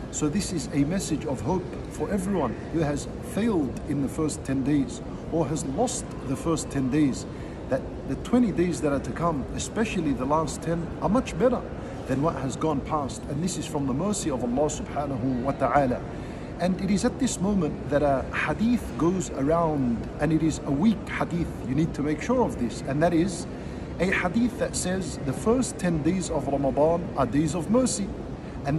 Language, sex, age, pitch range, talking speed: English, male, 50-69, 140-180 Hz, 200 wpm